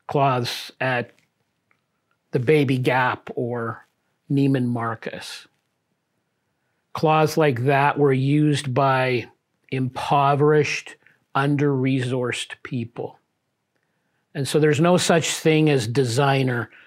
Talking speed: 90 wpm